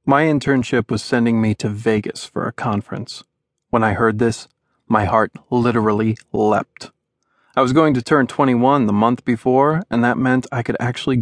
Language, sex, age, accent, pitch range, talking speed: English, male, 30-49, American, 110-135 Hz, 175 wpm